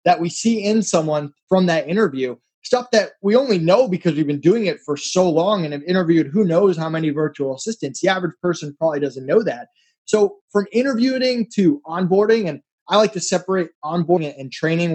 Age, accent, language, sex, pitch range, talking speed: 20-39, American, English, male, 155-205 Hz, 200 wpm